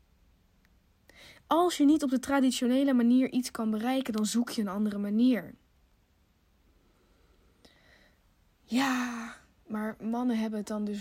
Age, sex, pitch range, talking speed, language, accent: 20-39, female, 200-225 Hz, 125 wpm, Dutch, Dutch